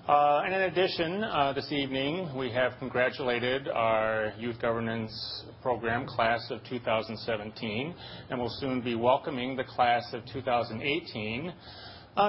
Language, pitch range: English, 110-140 Hz